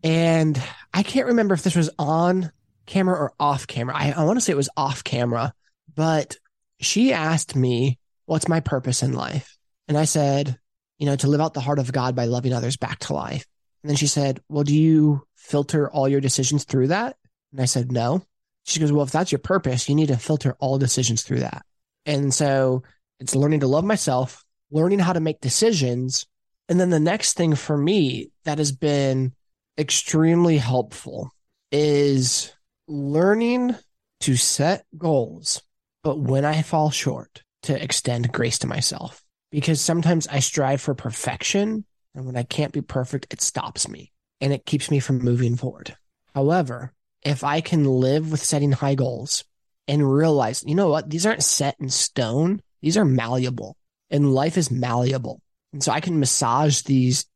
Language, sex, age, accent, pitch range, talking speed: English, male, 20-39, American, 130-155 Hz, 180 wpm